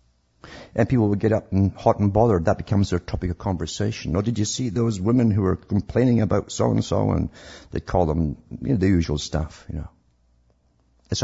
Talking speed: 215 wpm